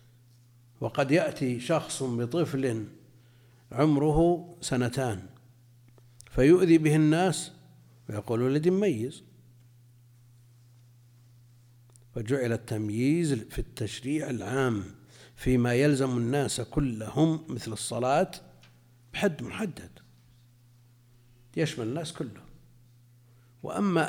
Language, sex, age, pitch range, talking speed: Arabic, male, 60-79, 120-145 Hz, 70 wpm